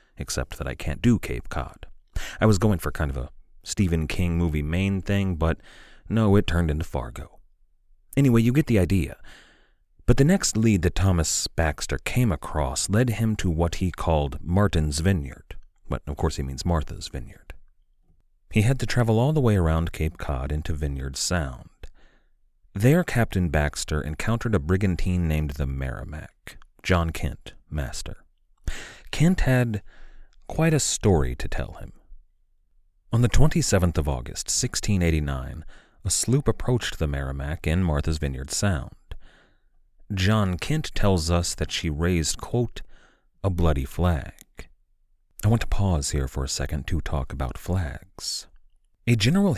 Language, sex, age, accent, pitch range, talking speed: English, male, 30-49, American, 75-105 Hz, 155 wpm